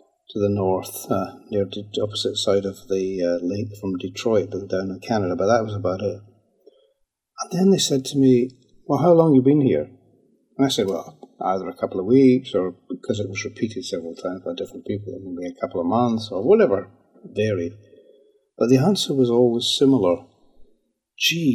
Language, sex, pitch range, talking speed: English, male, 105-135 Hz, 190 wpm